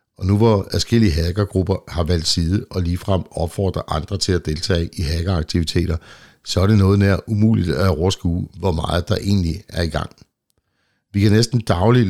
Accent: native